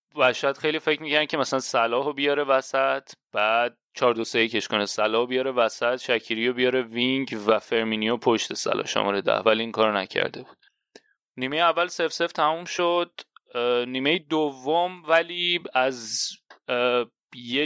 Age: 30-49